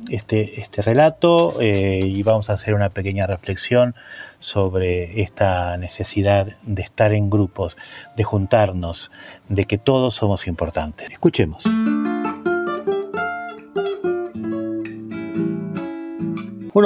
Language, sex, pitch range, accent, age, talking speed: Spanish, male, 105-145 Hz, Argentinian, 30-49, 95 wpm